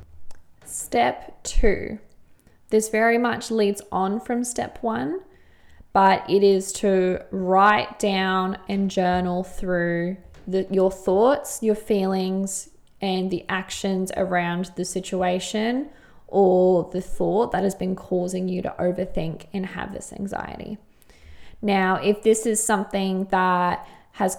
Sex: female